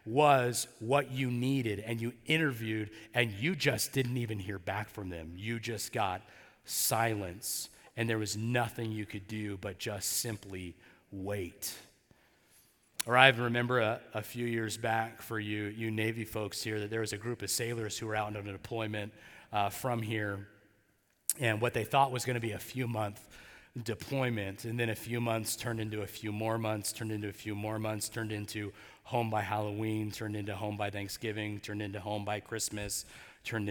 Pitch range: 105-125 Hz